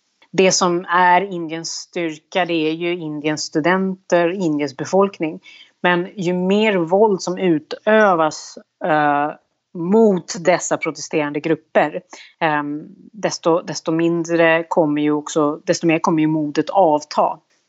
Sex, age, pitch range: female, 30-49, 155-180 Hz